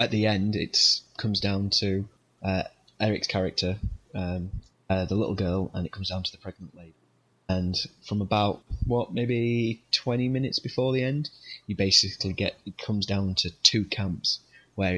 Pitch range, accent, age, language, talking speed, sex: 95-105 Hz, British, 20-39, English, 170 wpm, male